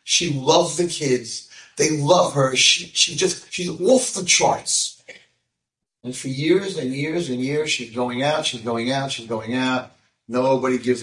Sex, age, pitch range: male, 40-59, 125-160 Hz